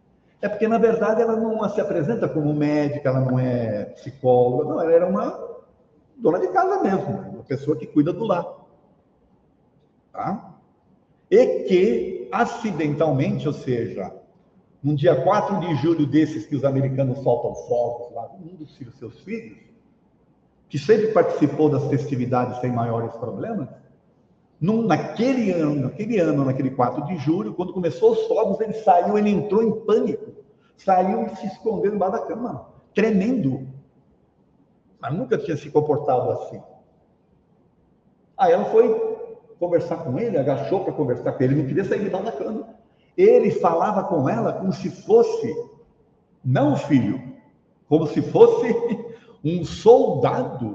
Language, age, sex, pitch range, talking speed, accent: Portuguese, 50-69, male, 140-225 Hz, 145 wpm, Brazilian